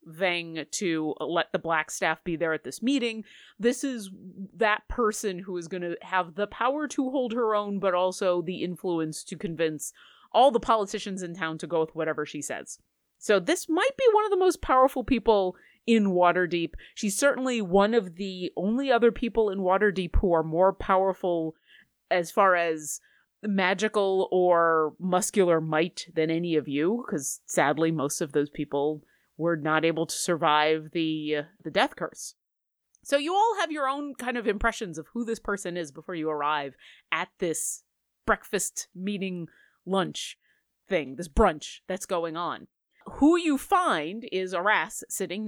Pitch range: 165-230 Hz